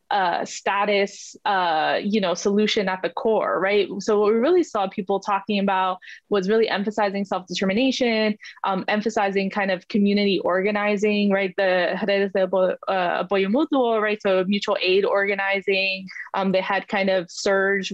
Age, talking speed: 20-39, 150 wpm